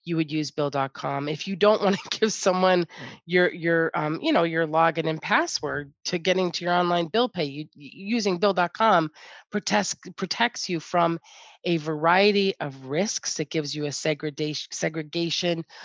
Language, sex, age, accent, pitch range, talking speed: English, female, 30-49, American, 155-180 Hz, 165 wpm